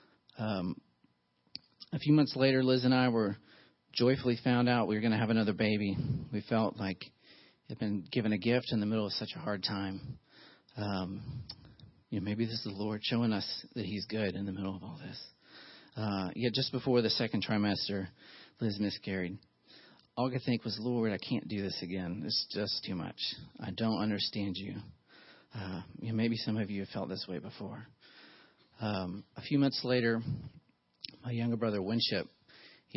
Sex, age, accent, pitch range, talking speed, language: male, 40-59, American, 95-115 Hz, 190 wpm, English